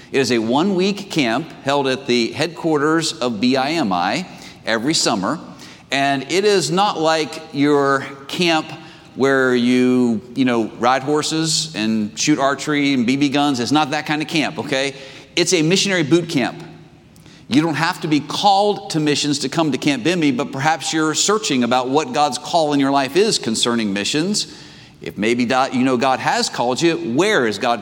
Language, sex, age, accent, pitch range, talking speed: English, male, 50-69, American, 130-165 Hz, 175 wpm